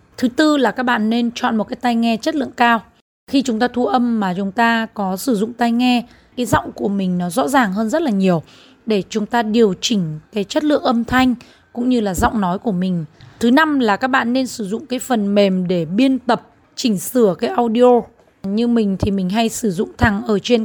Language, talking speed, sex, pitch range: Vietnamese, 240 wpm, female, 200-240 Hz